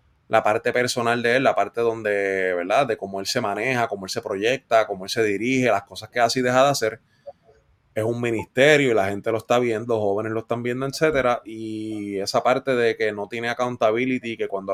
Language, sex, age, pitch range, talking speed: Spanish, male, 20-39, 110-145 Hz, 220 wpm